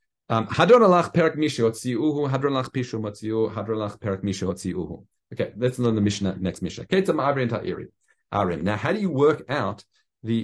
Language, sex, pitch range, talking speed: English, male, 100-140 Hz, 85 wpm